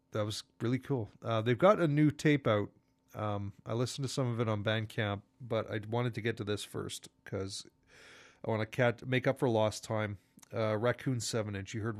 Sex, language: male, English